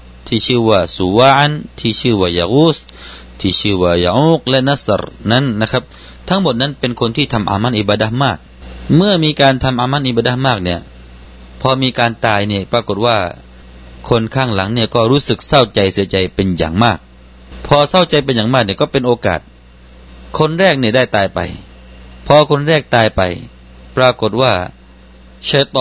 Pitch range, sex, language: 90-130 Hz, male, Thai